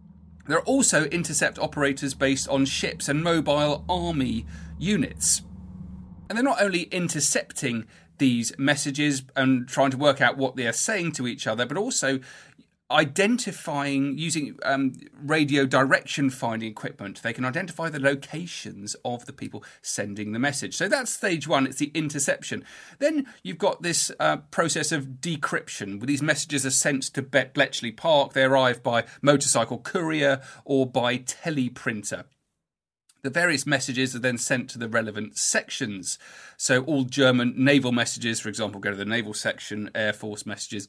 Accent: British